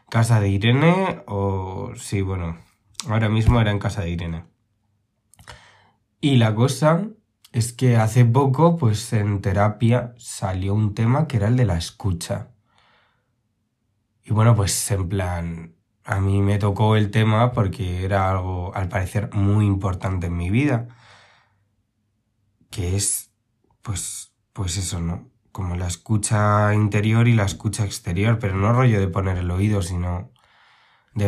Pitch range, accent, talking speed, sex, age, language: 100-120 Hz, Spanish, 145 wpm, male, 20-39, Spanish